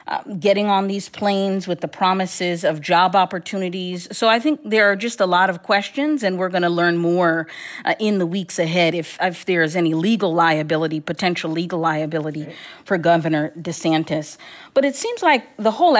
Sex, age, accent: female, 40-59, American